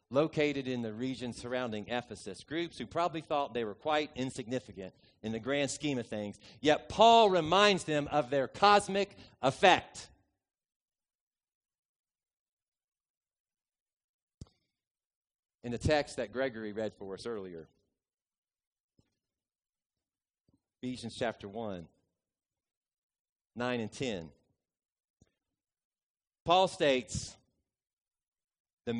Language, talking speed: English, 95 wpm